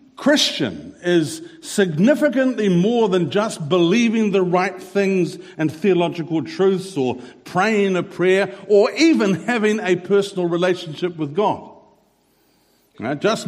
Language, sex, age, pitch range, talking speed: English, male, 50-69, 160-220 Hz, 115 wpm